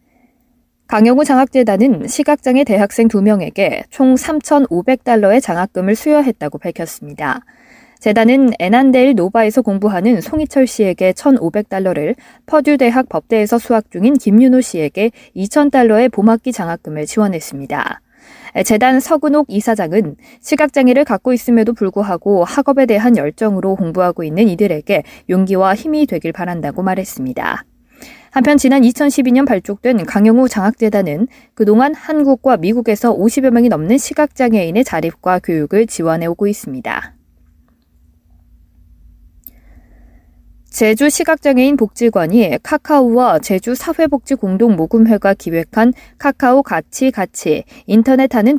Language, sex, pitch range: Korean, female, 190-260 Hz